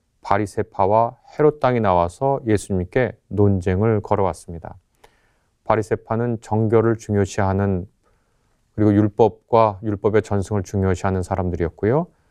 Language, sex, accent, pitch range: Korean, male, native, 100-135 Hz